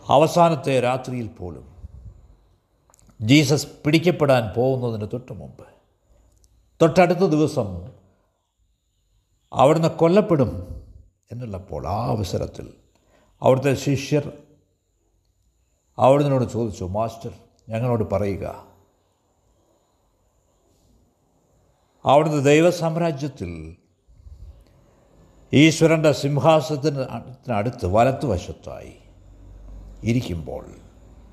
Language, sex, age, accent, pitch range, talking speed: Malayalam, male, 60-79, native, 90-140 Hz, 50 wpm